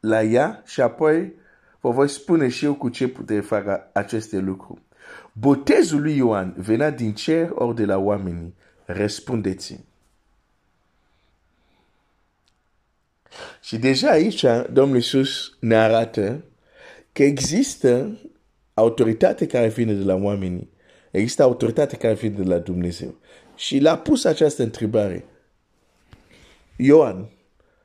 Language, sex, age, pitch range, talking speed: Romanian, male, 50-69, 100-130 Hz, 115 wpm